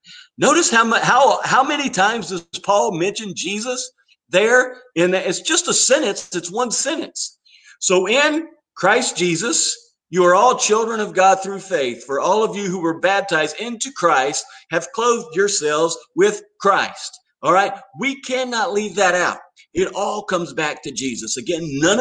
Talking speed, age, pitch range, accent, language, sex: 165 wpm, 50-69, 160-235 Hz, American, English, male